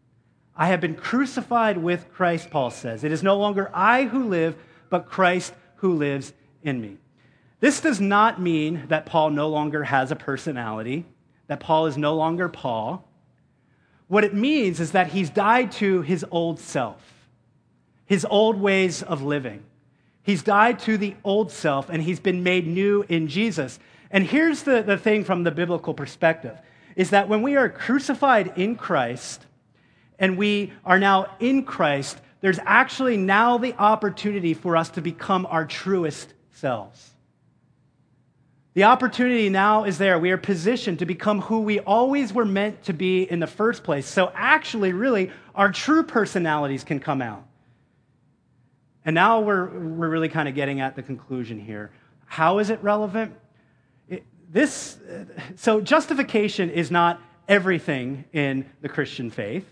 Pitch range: 150-205 Hz